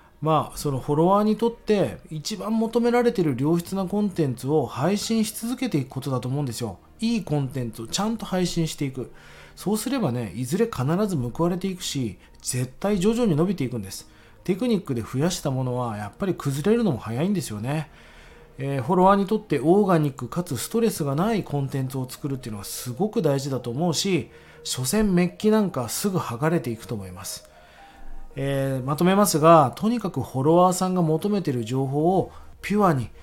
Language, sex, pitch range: Japanese, male, 125-185 Hz